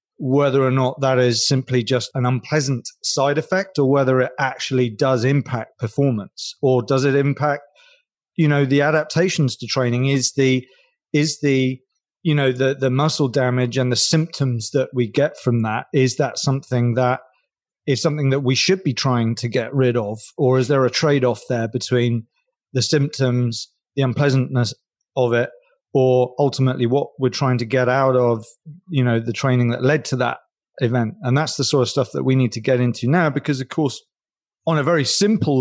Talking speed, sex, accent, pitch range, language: 190 wpm, male, British, 125-145 Hz, English